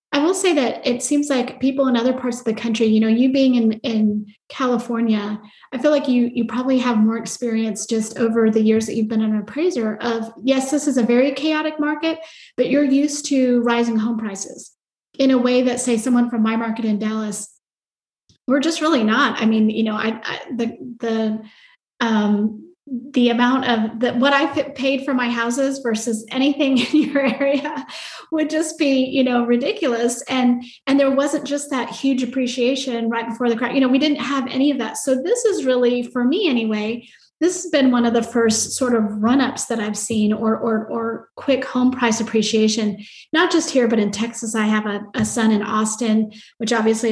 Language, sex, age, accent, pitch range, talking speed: English, female, 30-49, American, 225-265 Hz, 205 wpm